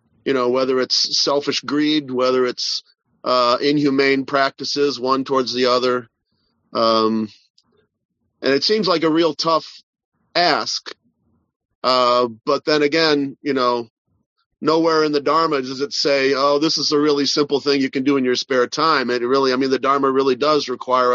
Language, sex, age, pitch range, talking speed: English, male, 40-59, 125-150 Hz, 175 wpm